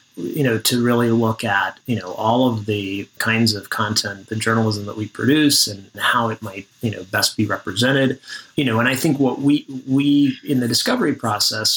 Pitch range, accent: 105-125 Hz, American